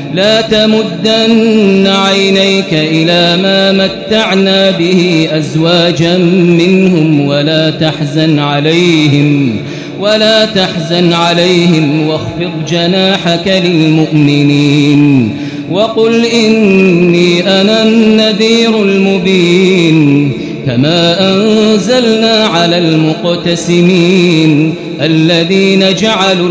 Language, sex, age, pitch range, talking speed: Arabic, male, 30-49, 155-200 Hz, 65 wpm